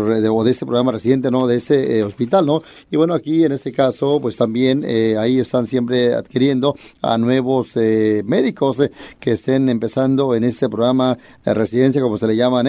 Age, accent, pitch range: 30-49, Mexican, 120-140 Hz